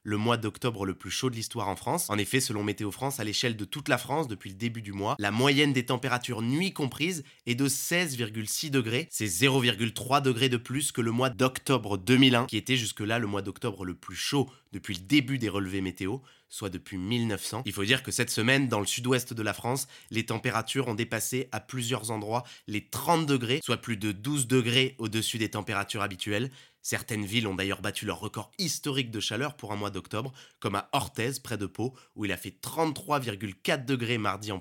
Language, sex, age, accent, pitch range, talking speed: French, male, 20-39, French, 105-130 Hz, 215 wpm